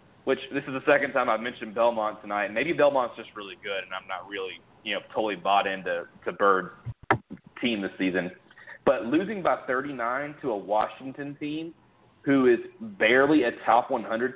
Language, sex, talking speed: English, male, 180 wpm